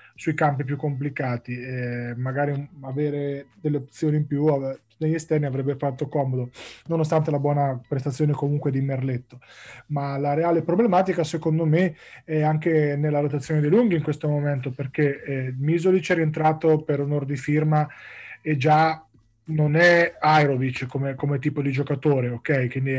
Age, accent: 20-39, native